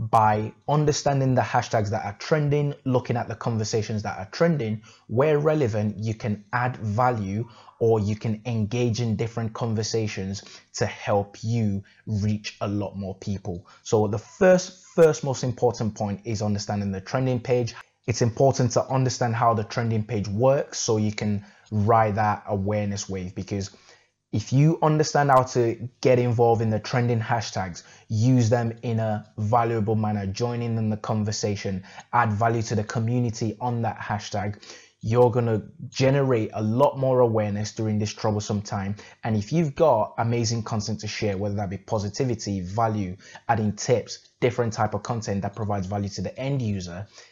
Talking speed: 165 wpm